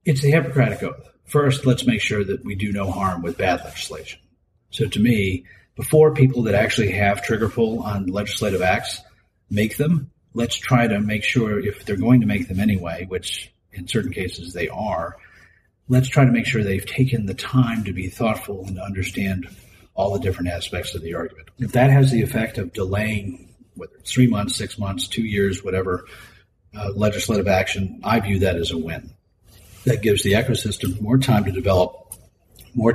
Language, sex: English, male